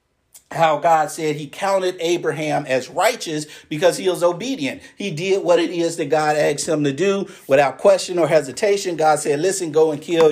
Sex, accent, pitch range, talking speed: male, American, 145-200 Hz, 190 wpm